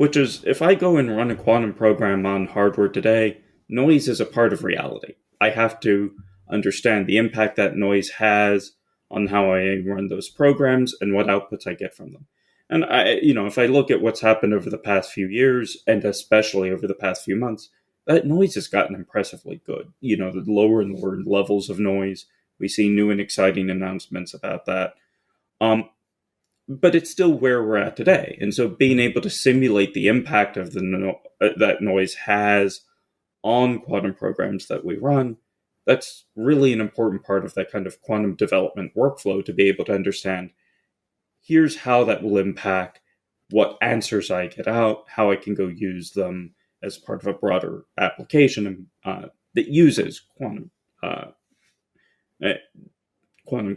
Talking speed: 175 wpm